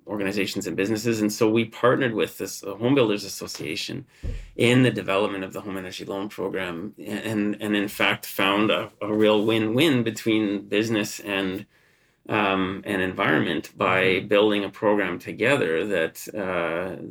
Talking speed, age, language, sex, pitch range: 155 wpm, 30-49, English, male, 95-110 Hz